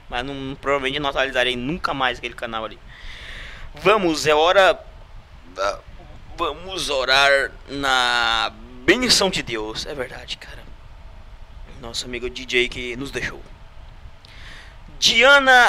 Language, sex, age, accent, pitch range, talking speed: Portuguese, male, 20-39, Brazilian, 110-155 Hz, 115 wpm